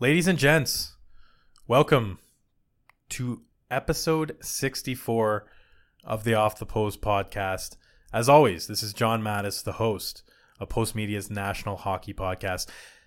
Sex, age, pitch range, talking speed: male, 20-39, 100-125 Hz, 120 wpm